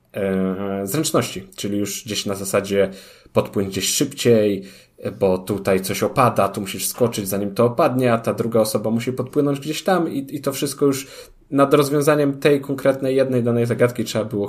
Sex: male